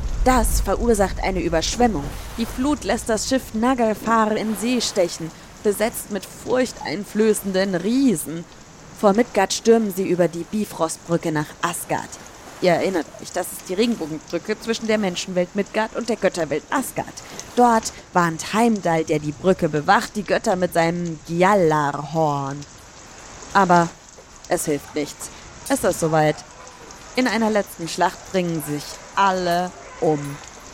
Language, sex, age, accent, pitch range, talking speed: German, female, 20-39, German, 155-230 Hz, 135 wpm